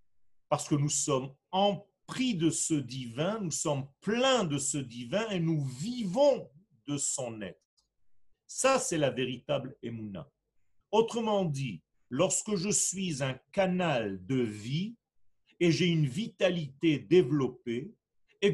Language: French